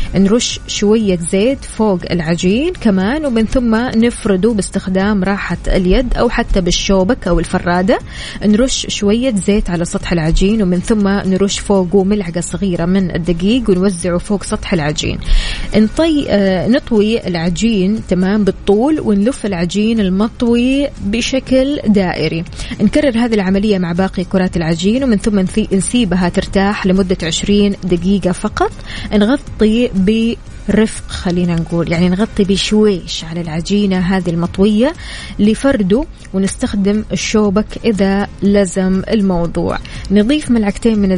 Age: 20-39